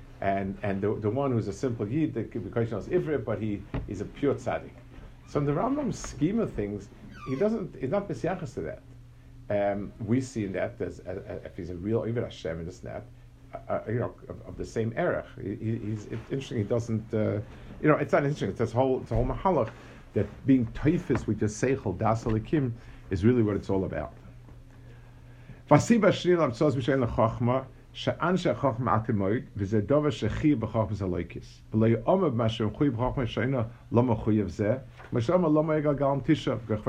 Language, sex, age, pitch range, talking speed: English, male, 50-69, 110-135 Hz, 150 wpm